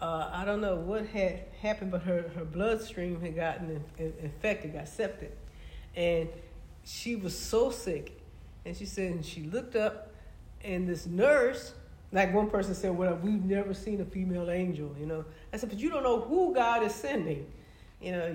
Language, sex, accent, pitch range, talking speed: English, female, American, 170-210 Hz, 185 wpm